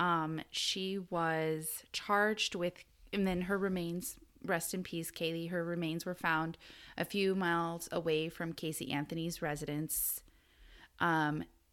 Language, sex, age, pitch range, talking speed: English, female, 30-49, 155-195 Hz, 135 wpm